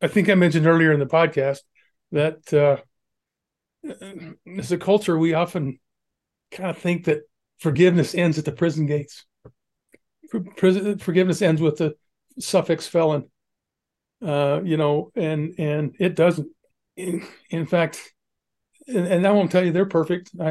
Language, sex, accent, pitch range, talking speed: English, male, American, 150-180 Hz, 145 wpm